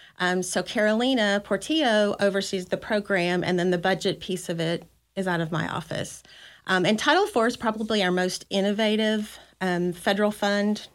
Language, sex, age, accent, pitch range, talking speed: English, female, 30-49, American, 180-210 Hz, 170 wpm